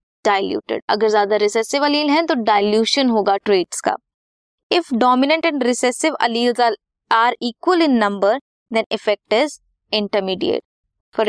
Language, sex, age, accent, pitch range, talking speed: Hindi, female, 20-39, native, 210-280 Hz, 75 wpm